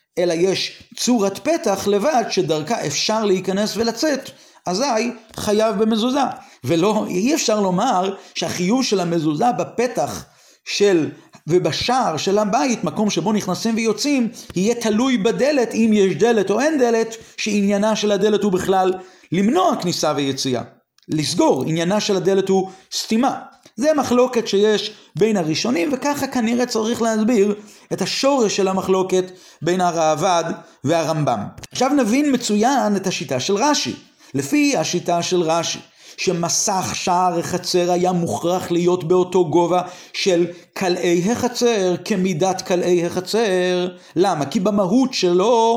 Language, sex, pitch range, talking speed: Hebrew, male, 180-240 Hz, 125 wpm